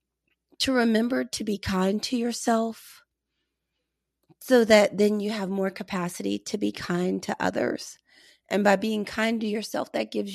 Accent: American